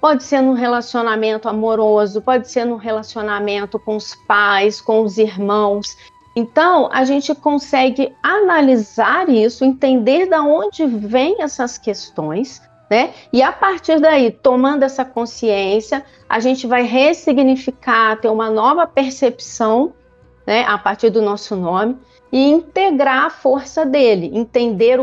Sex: female